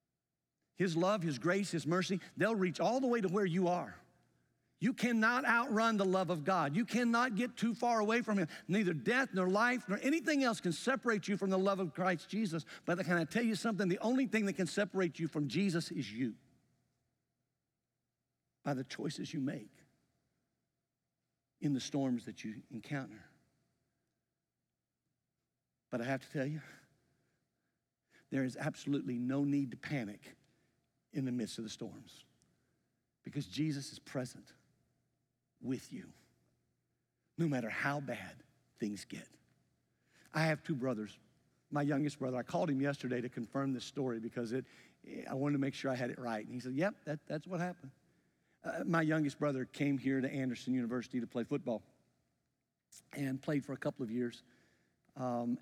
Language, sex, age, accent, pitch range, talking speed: English, male, 50-69, American, 130-185 Hz, 170 wpm